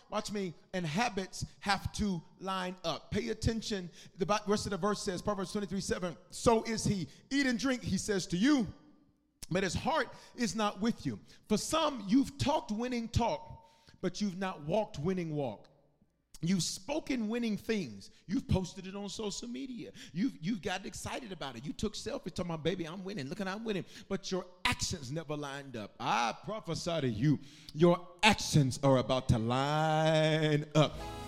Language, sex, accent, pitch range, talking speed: English, male, American, 175-240 Hz, 180 wpm